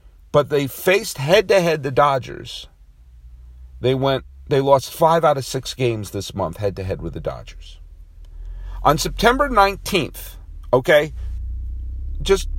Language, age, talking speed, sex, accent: English, 50-69, 145 wpm, male, American